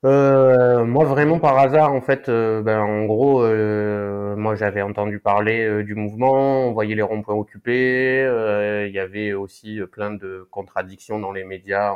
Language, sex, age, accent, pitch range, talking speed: French, male, 20-39, French, 100-125 Hz, 180 wpm